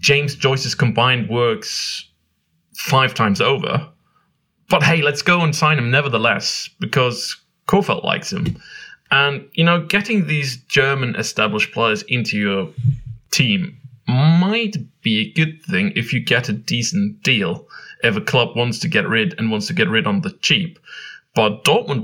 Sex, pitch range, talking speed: male, 110-170 Hz, 160 wpm